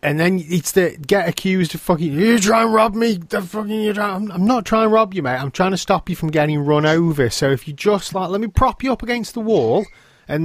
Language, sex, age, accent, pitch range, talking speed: English, male, 30-49, British, 135-210 Hz, 260 wpm